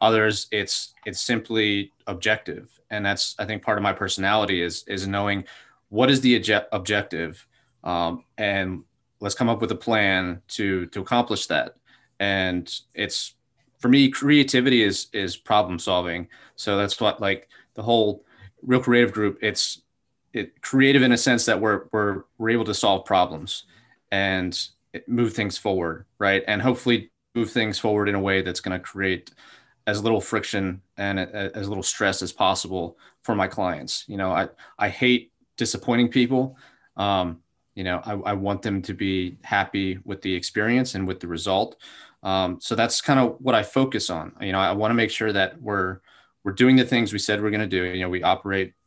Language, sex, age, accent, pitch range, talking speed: English, male, 20-39, American, 95-115 Hz, 185 wpm